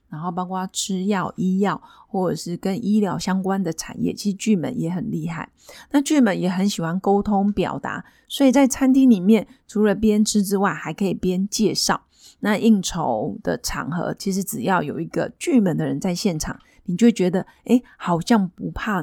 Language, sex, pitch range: Chinese, female, 185-220 Hz